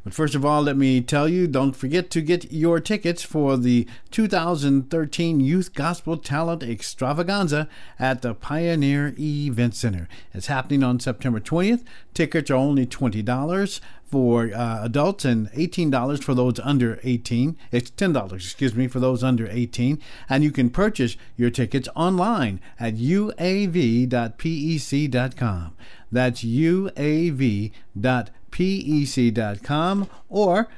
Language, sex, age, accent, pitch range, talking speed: English, male, 50-69, American, 115-150 Hz, 130 wpm